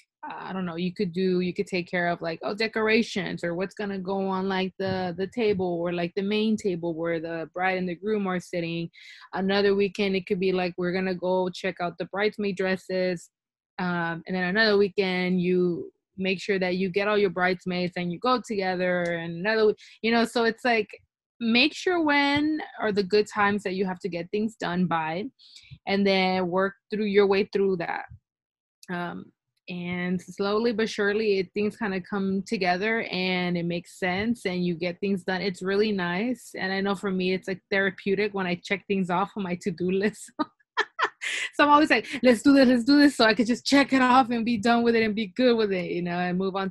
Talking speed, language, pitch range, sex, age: 220 wpm, English, 180-225 Hz, female, 20-39